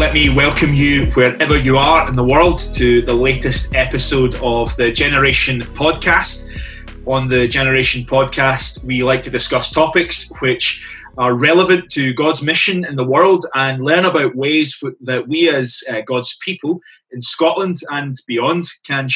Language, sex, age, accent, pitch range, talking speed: English, male, 20-39, British, 120-150 Hz, 155 wpm